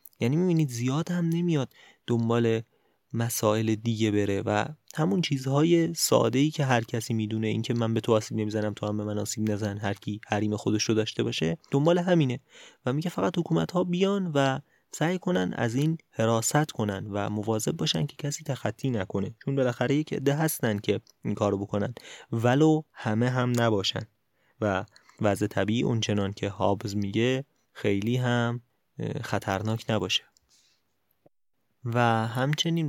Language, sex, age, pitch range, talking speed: Persian, male, 30-49, 105-130 Hz, 155 wpm